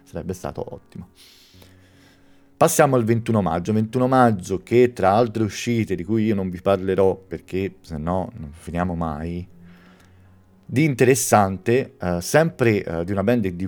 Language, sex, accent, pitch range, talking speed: Italian, male, native, 90-110 Hz, 145 wpm